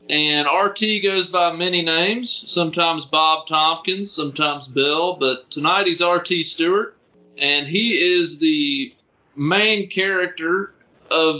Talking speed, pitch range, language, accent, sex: 120 wpm, 135-165 Hz, English, American, male